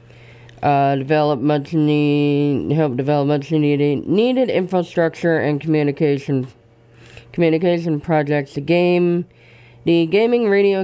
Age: 20-39